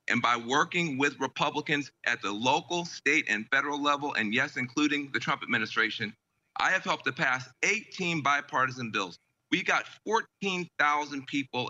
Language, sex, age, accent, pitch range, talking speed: English, male, 40-59, American, 130-175 Hz, 145 wpm